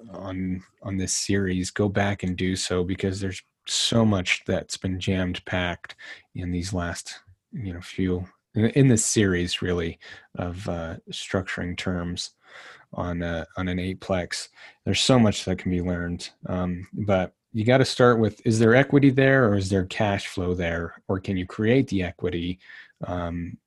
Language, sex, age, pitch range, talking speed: English, male, 30-49, 90-110 Hz, 170 wpm